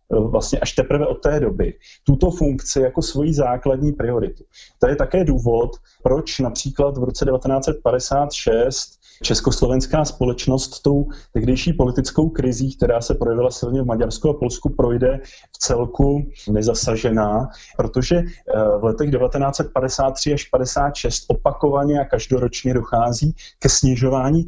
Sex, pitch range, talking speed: male, 125-145 Hz, 125 wpm